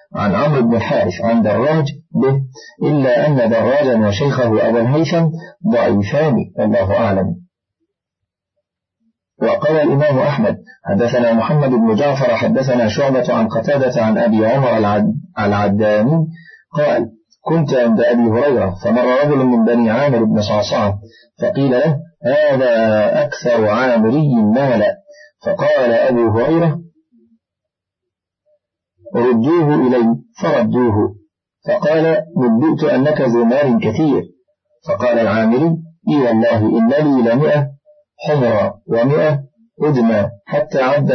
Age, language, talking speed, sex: 30-49, Arabic, 110 wpm, male